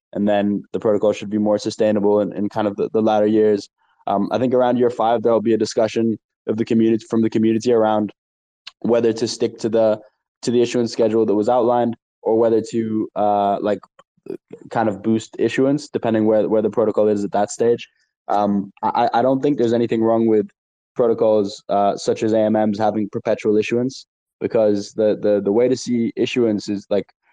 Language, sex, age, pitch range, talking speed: English, male, 10-29, 105-115 Hz, 200 wpm